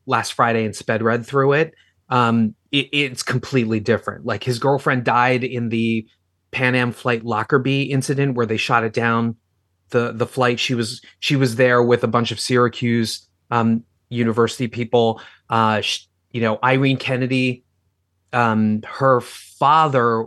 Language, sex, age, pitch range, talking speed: English, male, 30-49, 110-135 Hz, 155 wpm